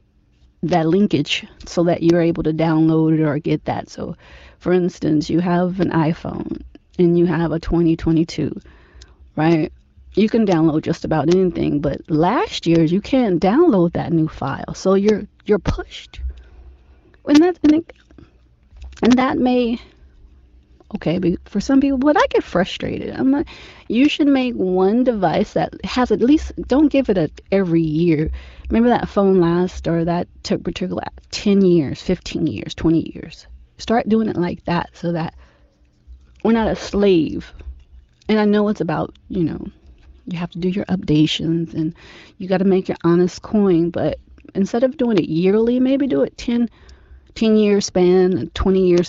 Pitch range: 155-205 Hz